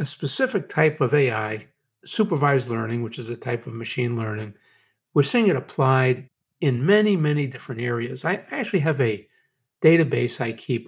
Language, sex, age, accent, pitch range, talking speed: English, male, 60-79, American, 125-160 Hz, 165 wpm